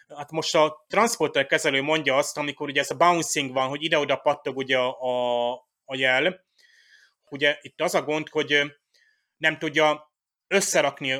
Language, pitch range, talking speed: Hungarian, 140-170 Hz, 155 wpm